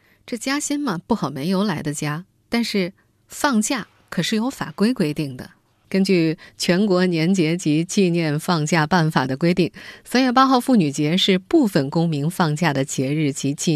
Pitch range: 155-205 Hz